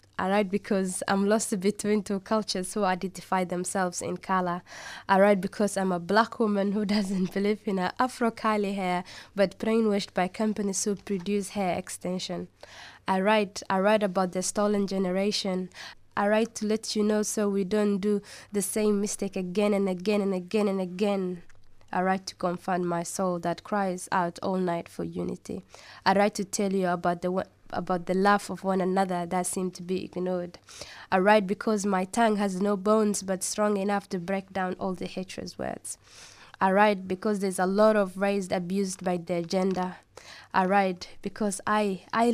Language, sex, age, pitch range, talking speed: English, female, 10-29, 185-205 Hz, 185 wpm